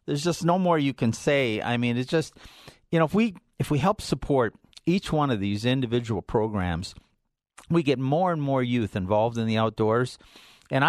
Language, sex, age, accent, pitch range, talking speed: English, male, 50-69, American, 110-145 Hz, 200 wpm